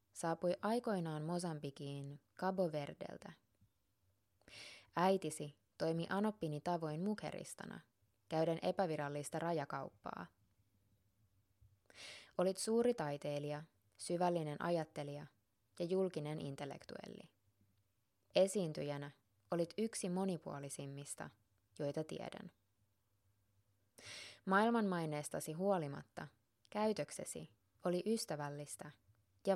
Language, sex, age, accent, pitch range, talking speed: Finnish, female, 20-39, native, 105-175 Hz, 65 wpm